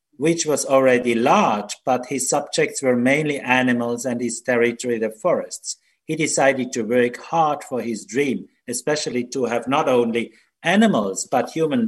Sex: male